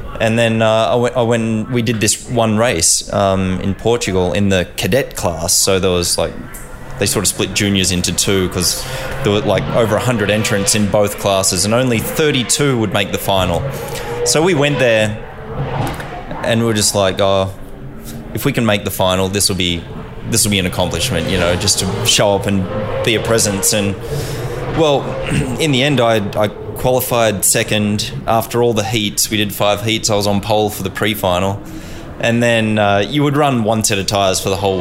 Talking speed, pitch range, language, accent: 205 wpm, 95-115 Hz, English, Australian